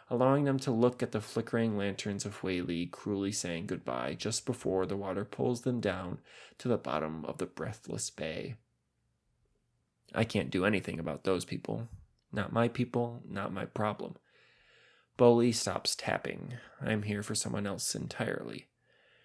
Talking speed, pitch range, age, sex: 155 wpm, 100-125 Hz, 20-39, male